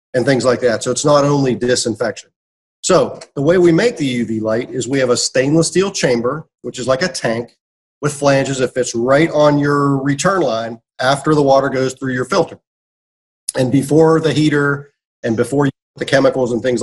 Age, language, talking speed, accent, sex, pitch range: 40-59, English, 205 wpm, American, male, 120-150 Hz